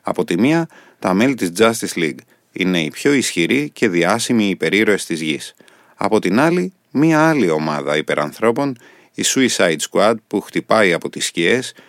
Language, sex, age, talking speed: Greek, male, 30-49, 160 wpm